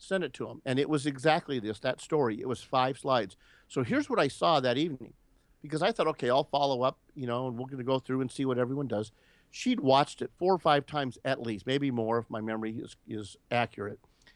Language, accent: English, American